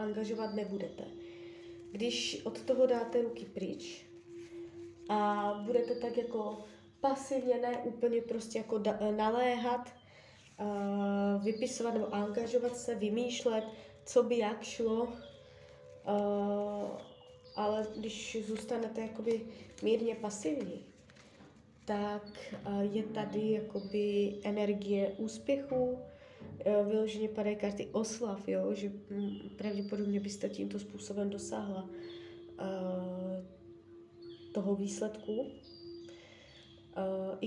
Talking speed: 90 wpm